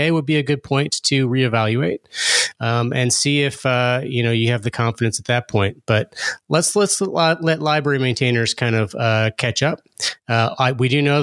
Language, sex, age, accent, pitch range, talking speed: English, male, 30-49, American, 110-135 Hz, 205 wpm